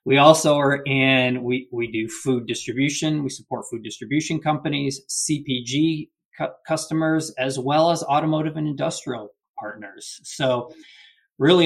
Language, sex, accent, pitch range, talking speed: English, male, American, 125-150 Hz, 135 wpm